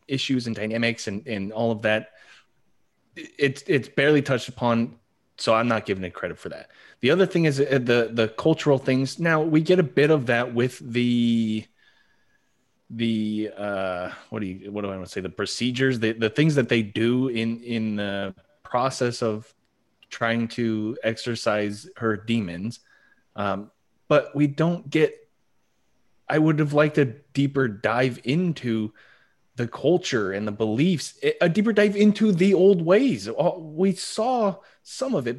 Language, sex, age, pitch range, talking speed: English, male, 30-49, 115-165 Hz, 165 wpm